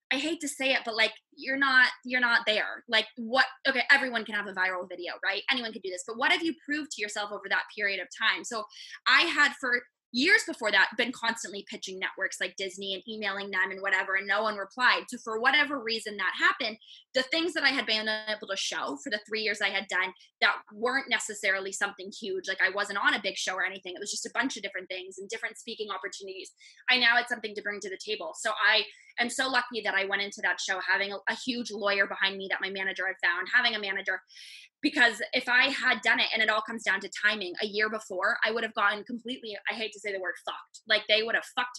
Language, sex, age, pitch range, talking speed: English, female, 20-39, 200-255 Hz, 250 wpm